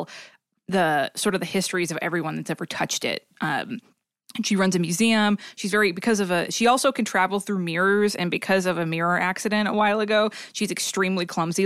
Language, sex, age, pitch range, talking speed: English, female, 20-39, 170-200 Hz, 200 wpm